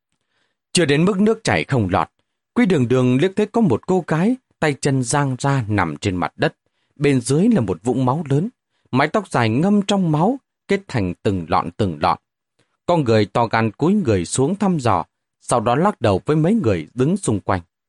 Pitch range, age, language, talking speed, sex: 105-165 Hz, 30-49, Vietnamese, 210 wpm, male